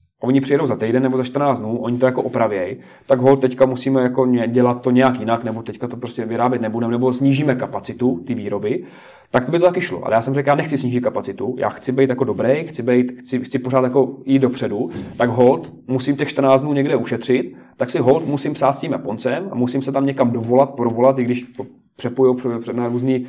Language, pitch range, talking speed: Czech, 120-135 Hz, 220 wpm